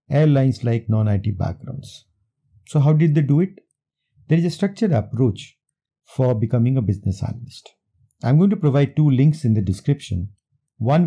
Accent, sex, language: Indian, male, English